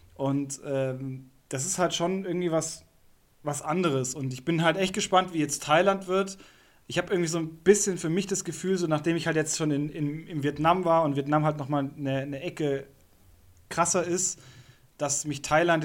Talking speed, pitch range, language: 200 wpm, 140-165 Hz, German